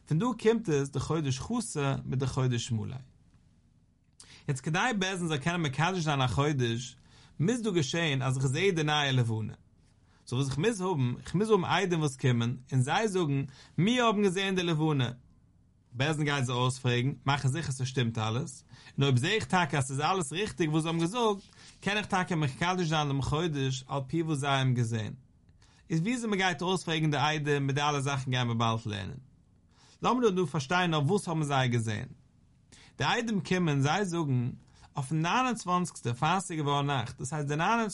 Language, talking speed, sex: English, 95 wpm, male